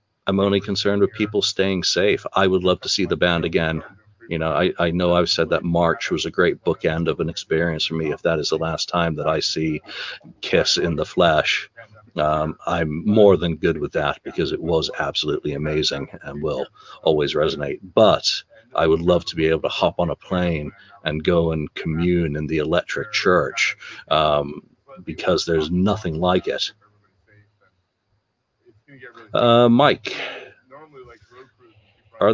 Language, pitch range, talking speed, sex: English, 85-105 Hz, 170 wpm, male